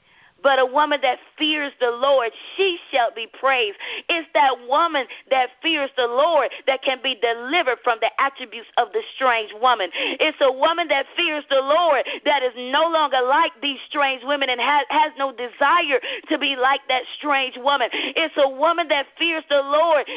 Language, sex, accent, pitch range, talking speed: English, female, American, 245-305 Hz, 185 wpm